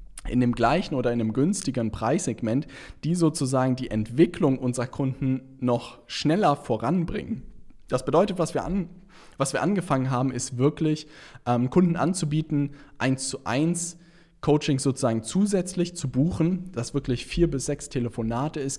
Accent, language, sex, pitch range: German, German, male, 120-155 Hz